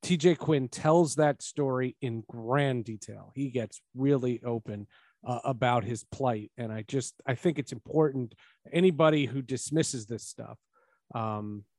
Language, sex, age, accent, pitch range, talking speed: English, male, 40-59, American, 125-180 Hz, 150 wpm